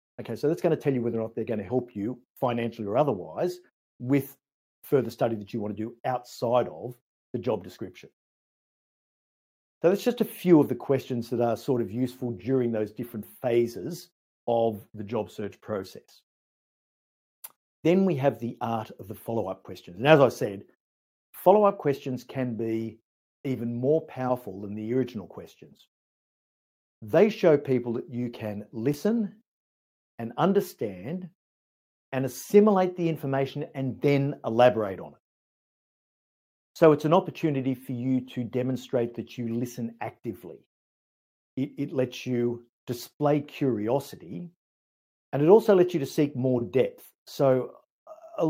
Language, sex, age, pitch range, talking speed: English, male, 50-69, 115-150 Hz, 150 wpm